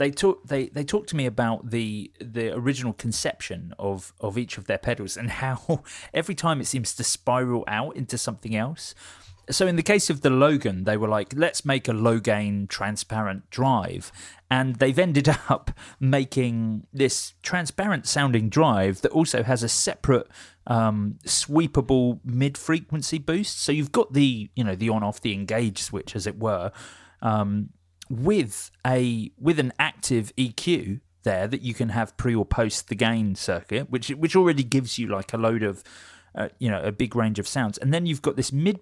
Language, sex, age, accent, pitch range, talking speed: English, male, 30-49, British, 105-145 Hz, 190 wpm